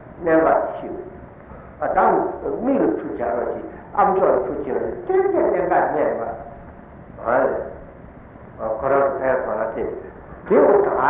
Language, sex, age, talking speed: Italian, male, 60-79, 55 wpm